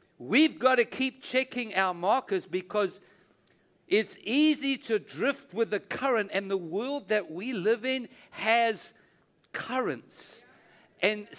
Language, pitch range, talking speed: English, 205-265 Hz, 130 wpm